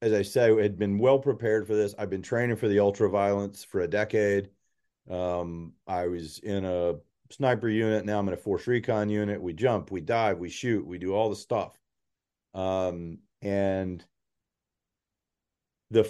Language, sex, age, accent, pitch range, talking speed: English, male, 40-59, American, 90-110 Hz, 175 wpm